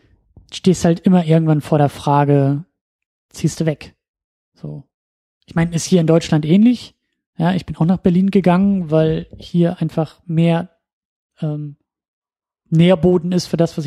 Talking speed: 150 wpm